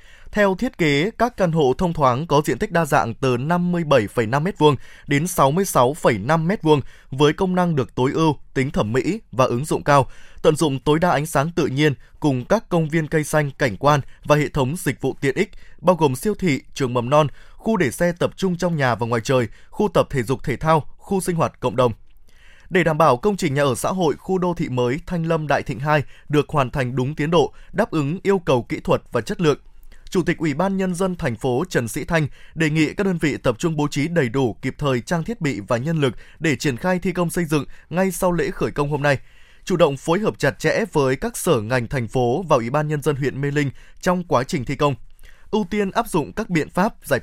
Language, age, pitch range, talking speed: Vietnamese, 20-39, 135-180 Hz, 245 wpm